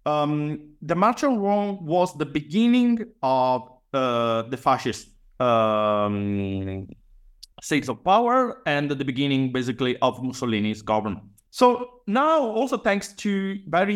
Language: English